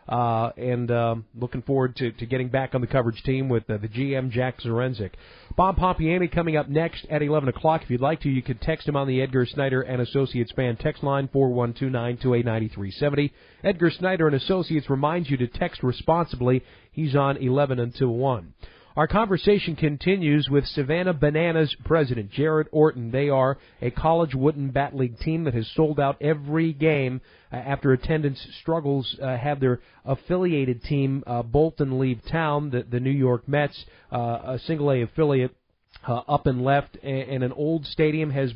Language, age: English, 40-59